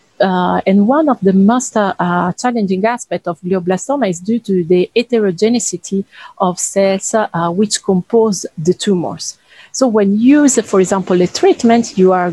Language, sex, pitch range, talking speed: English, female, 185-240 Hz, 170 wpm